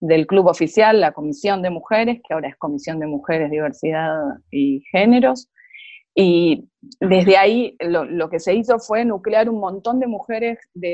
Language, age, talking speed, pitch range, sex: Spanish, 30-49, 170 wpm, 160-220 Hz, female